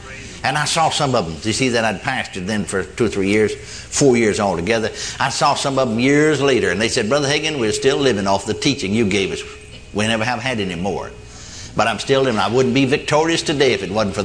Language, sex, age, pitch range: English, male, 60-79, 115-155 Hz